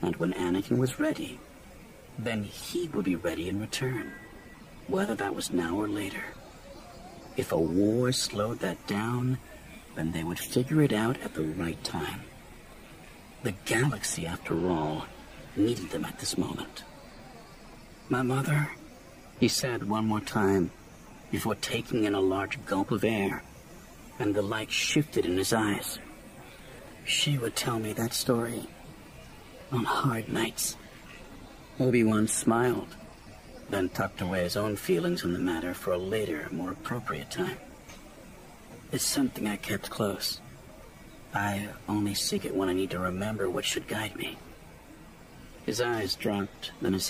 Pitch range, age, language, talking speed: 95-115 Hz, 60-79, English, 145 wpm